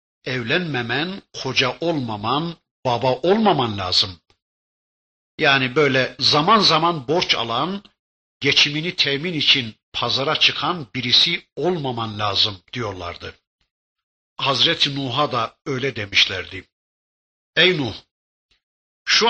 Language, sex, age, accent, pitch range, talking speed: Turkish, male, 60-79, native, 120-165 Hz, 90 wpm